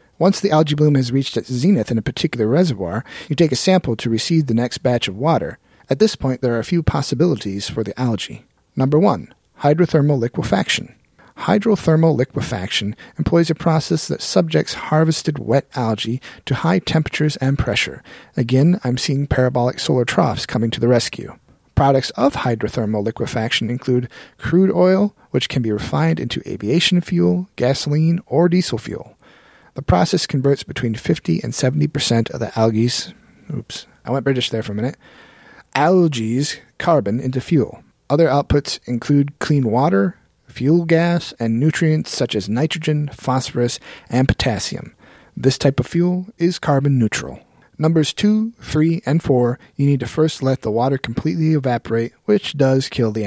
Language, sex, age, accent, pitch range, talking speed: English, male, 40-59, American, 120-160 Hz, 160 wpm